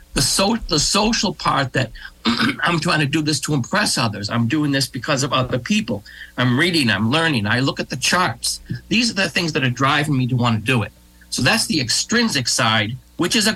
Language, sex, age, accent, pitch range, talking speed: English, male, 60-79, American, 115-180 Hz, 225 wpm